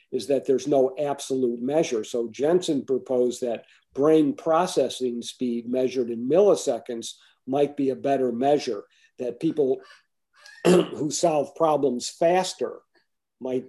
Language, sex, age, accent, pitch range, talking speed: English, male, 50-69, American, 125-155 Hz, 125 wpm